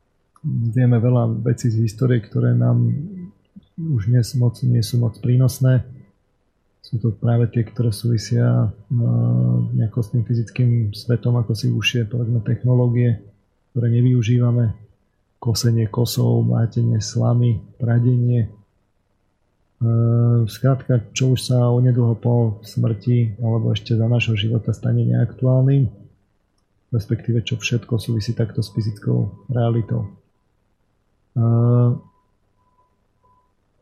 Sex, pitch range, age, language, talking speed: male, 105-125 Hz, 40-59, Slovak, 110 wpm